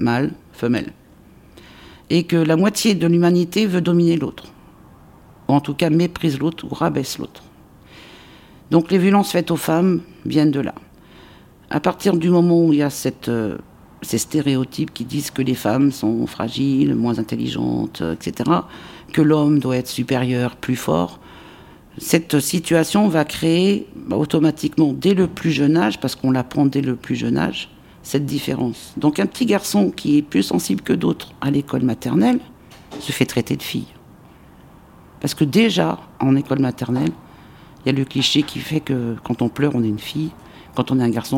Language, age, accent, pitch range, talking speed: French, 60-79, French, 120-170 Hz, 180 wpm